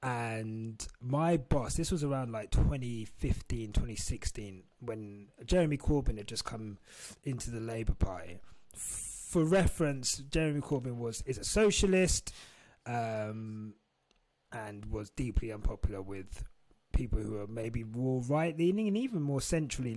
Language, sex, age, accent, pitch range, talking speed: English, male, 30-49, British, 110-170 Hz, 130 wpm